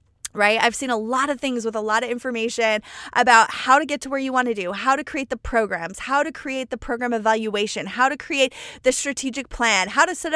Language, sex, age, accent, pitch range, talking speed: English, female, 20-39, American, 220-280 Hz, 245 wpm